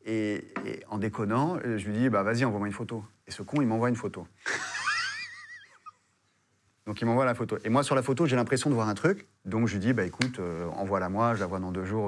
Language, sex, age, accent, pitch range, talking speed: French, male, 30-49, French, 100-115 Hz, 245 wpm